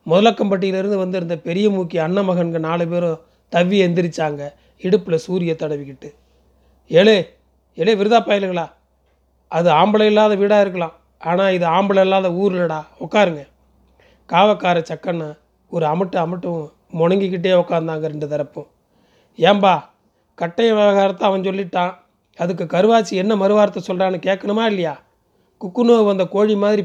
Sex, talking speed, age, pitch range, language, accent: male, 115 wpm, 30-49, 165-200 Hz, Tamil, native